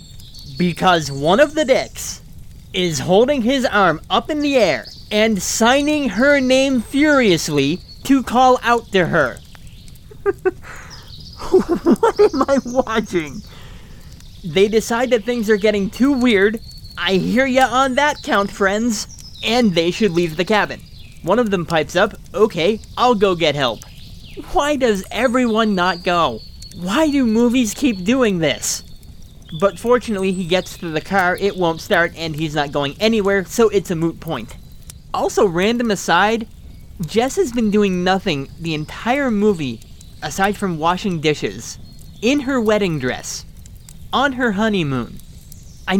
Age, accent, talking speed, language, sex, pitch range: 30-49, American, 145 wpm, English, male, 170-240 Hz